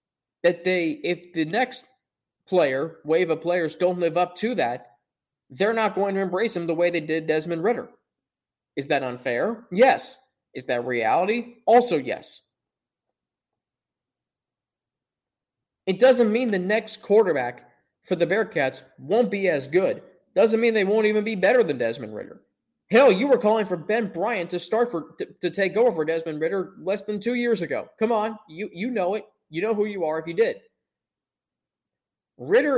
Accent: American